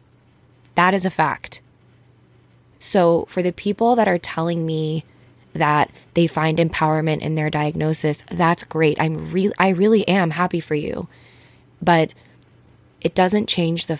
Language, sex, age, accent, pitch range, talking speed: English, female, 20-39, American, 155-175 Hz, 145 wpm